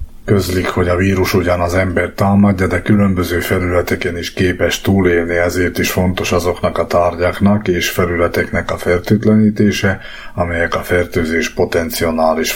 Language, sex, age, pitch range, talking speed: Hungarian, male, 30-49, 85-95 Hz, 130 wpm